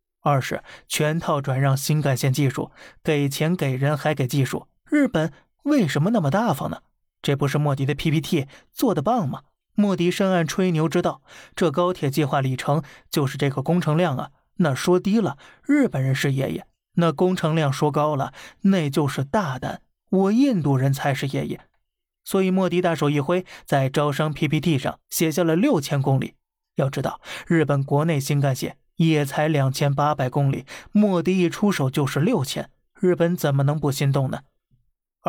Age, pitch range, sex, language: 20-39, 140-180 Hz, male, Chinese